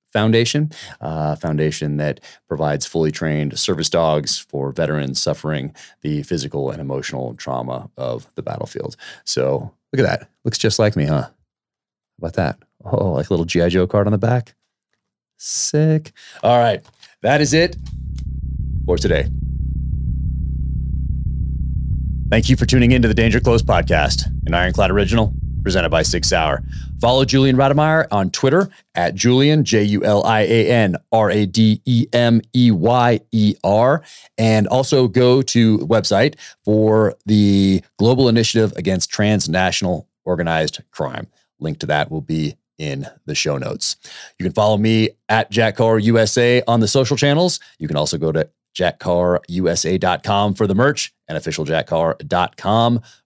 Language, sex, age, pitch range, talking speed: English, male, 30-49, 75-115 Hz, 155 wpm